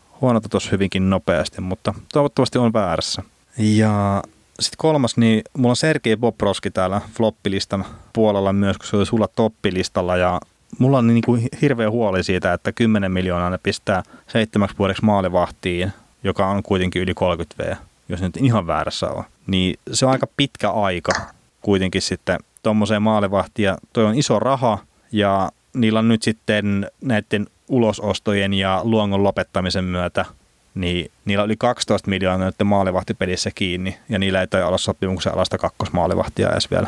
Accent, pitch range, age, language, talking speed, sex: native, 95-110 Hz, 30-49, Finnish, 155 wpm, male